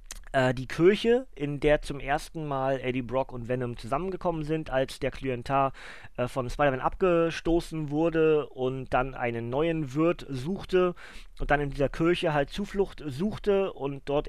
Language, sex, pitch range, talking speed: German, male, 130-165 Hz, 155 wpm